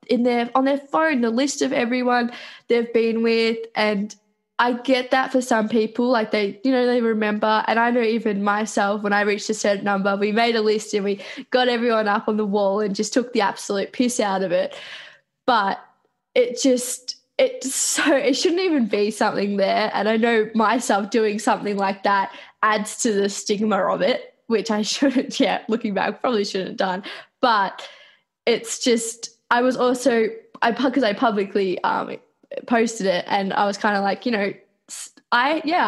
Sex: female